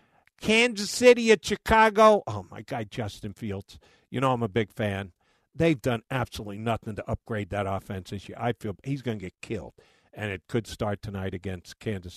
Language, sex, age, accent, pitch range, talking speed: English, male, 50-69, American, 115-180 Hz, 190 wpm